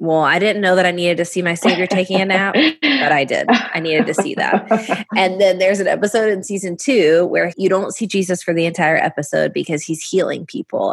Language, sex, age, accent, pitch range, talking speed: English, female, 20-39, American, 160-200 Hz, 235 wpm